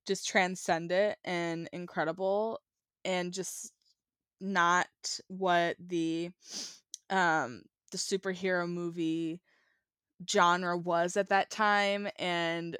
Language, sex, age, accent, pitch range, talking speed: English, female, 10-29, American, 170-200 Hz, 95 wpm